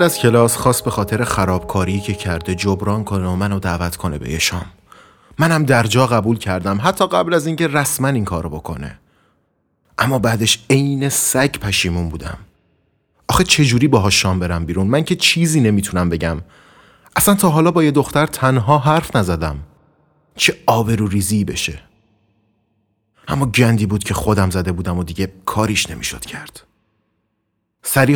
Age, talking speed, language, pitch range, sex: 30-49, 155 wpm, Persian, 95-120 Hz, male